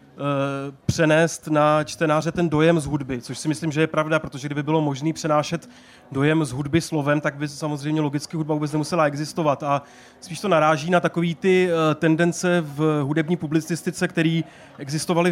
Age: 30-49